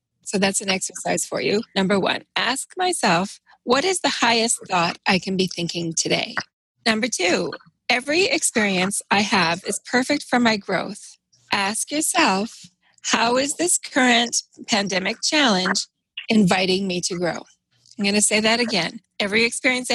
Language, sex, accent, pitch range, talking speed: English, female, American, 190-245 Hz, 155 wpm